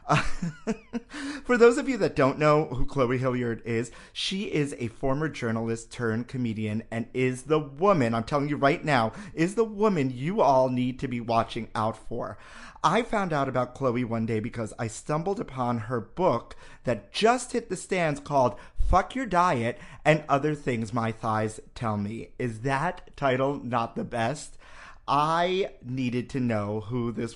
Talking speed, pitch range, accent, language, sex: 175 wpm, 115-175 Hz, American, English, male